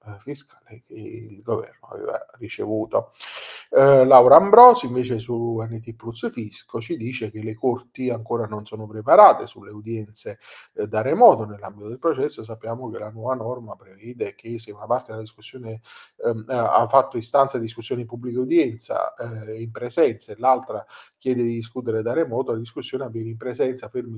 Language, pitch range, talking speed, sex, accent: Italian, 115-135 Hz, 170 wpm, male, native